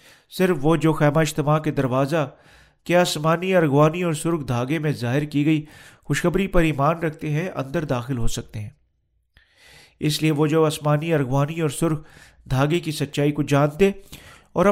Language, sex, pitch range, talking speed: Urdu, male, 140-170 Hz, 165 wpm